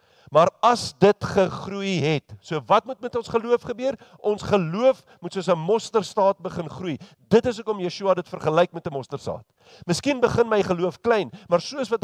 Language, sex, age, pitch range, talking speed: English, male, 50-69, 140-200 Hz, 190 wpm